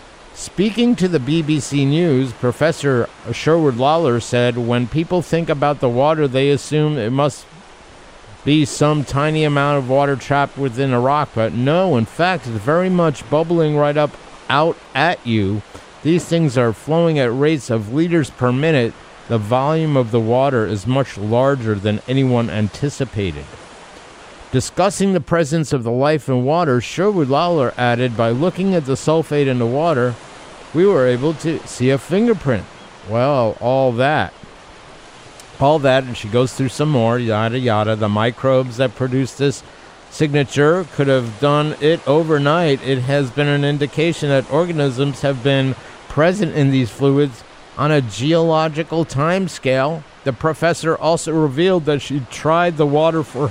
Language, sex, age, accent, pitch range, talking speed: English, male, 50-69, American, 125-160 Hz, 160 wpm